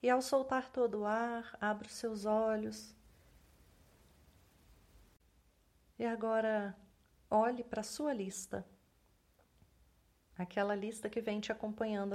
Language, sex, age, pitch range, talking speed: Portuguese, female, 40-59, 185-230 Hz, 115 wpm